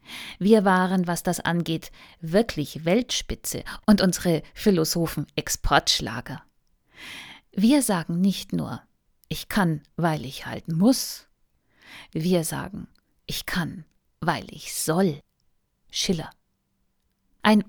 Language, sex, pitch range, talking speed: German, female, 170-220 Hz, 100 wpm